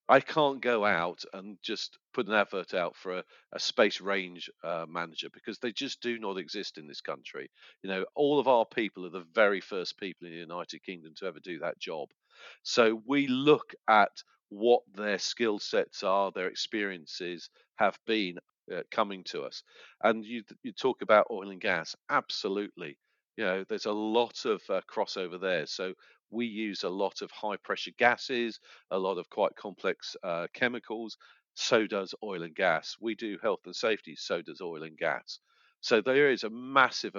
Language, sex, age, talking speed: English, male, 40-59, 185 wpm